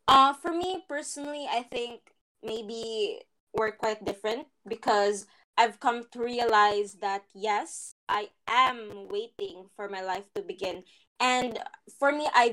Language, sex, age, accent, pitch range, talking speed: Filipino, female, 20-39, native, 215-270 Hz, 140 wpm